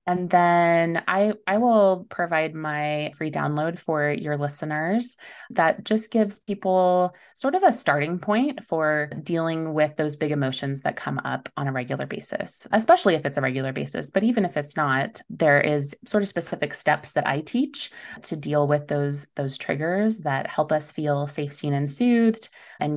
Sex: female